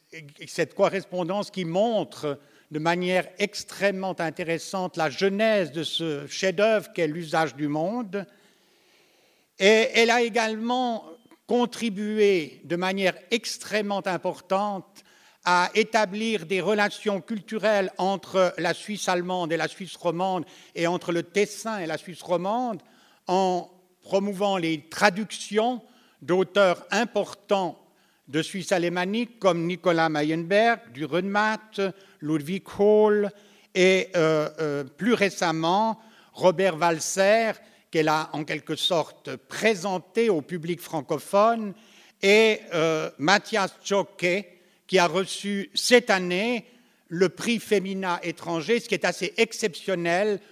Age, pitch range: 60-79, 170-210 Hz